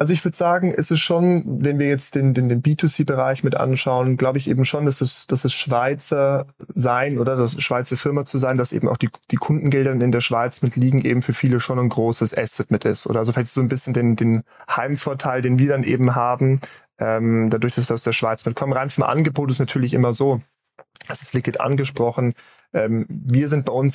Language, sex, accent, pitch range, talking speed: German, male, German, 120-135 Hz, 225 wpm